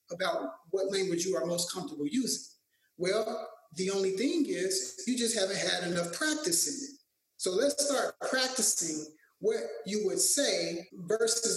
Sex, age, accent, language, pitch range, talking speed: male, 30-49, American, English, 170-225 Hz, 155 wpm